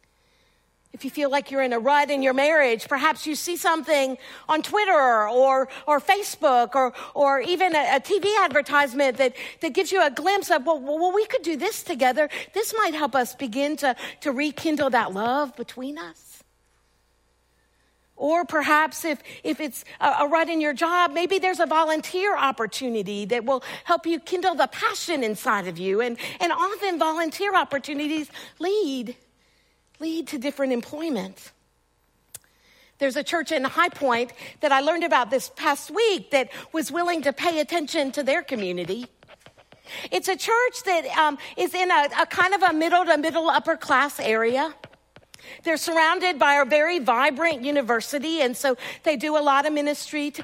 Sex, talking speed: female, 170 wpm